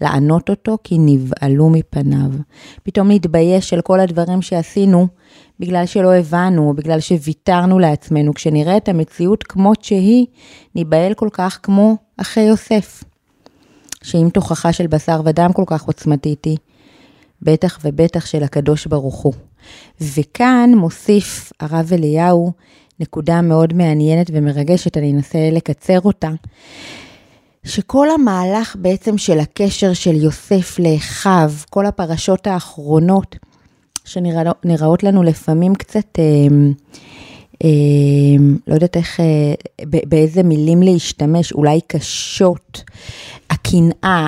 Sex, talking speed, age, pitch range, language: female, 105 wpm, 30-49, 155-190 Hz, Hebrew